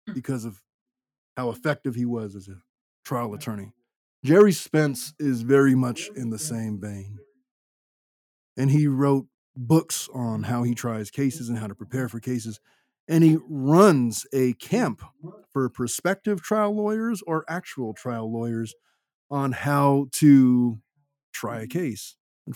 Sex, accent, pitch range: male, American, 120-145 Hz